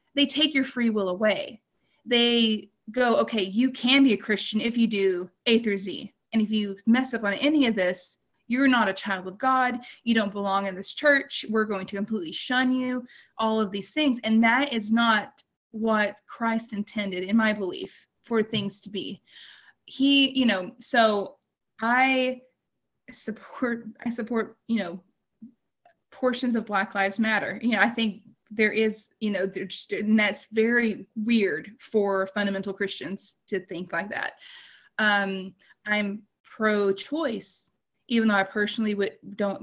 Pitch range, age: 200-235 Hz, 20-39